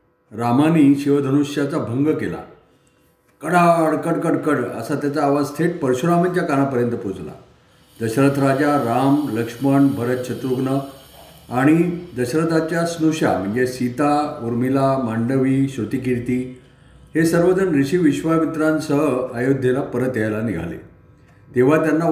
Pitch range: 125-155 Hz